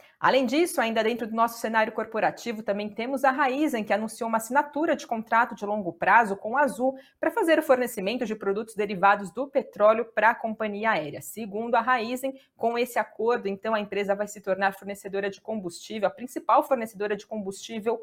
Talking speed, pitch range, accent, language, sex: 190 wpm, 200-260 Hz, Brazilian, Portuguese, female